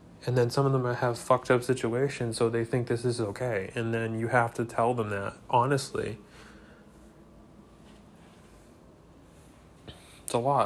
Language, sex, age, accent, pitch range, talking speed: English, male, 20-39, American, 110-130 Hz, 150 wpm